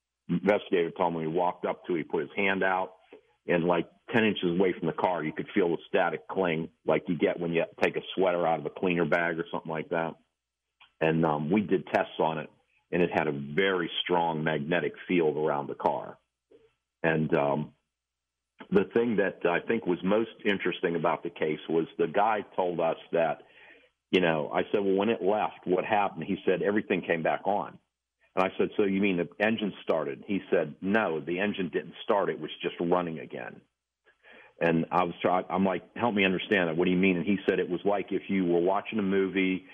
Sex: male